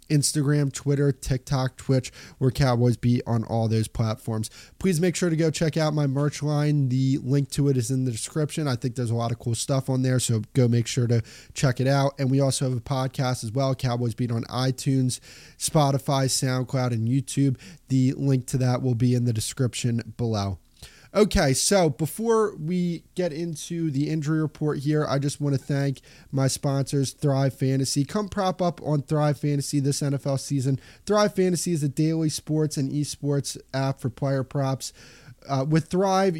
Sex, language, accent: male, English, American